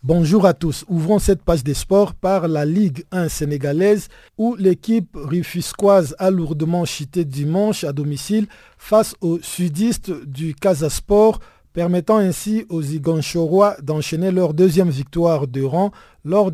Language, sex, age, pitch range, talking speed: French, male, 50-69, 150-195 Hz, 140 wpm